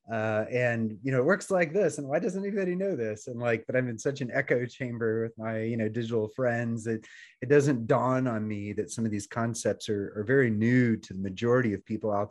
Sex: male